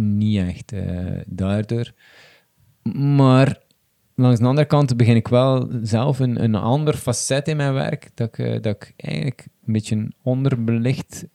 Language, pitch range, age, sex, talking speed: Dutch, 105-125 Hz, 20-39, male, 155 wpm